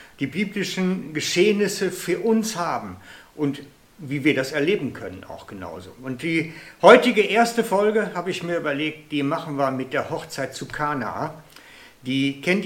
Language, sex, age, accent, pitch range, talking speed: German, male, 60-79, German, 140-190 Hz, 155 wpm